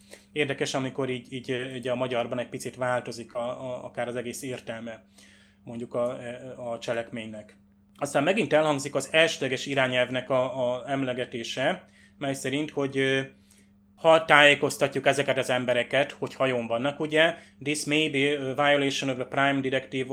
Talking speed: 150 wpm